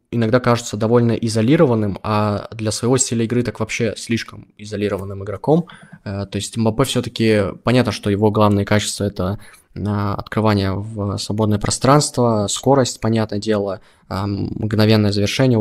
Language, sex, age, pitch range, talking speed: Russian, male, 20-39, 100-120 Hz, 125 wpm